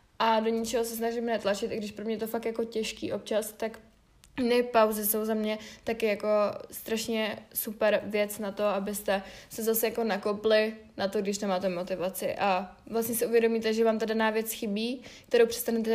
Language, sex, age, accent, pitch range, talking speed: Czech, female, 20-39, native, 215-245 Hz, 190 wpm